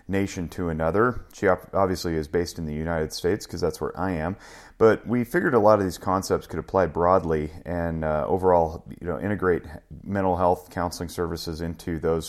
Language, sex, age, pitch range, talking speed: English, male, 30-49, 85-95 Hz, 190 wpm